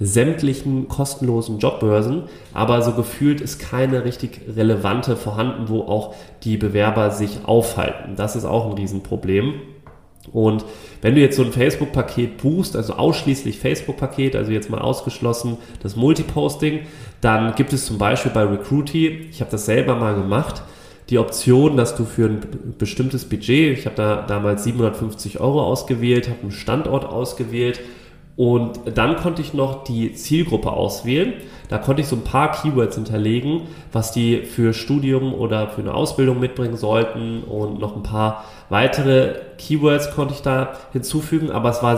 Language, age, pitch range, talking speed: German, 30-49, 110-135 Hz, 155 wpm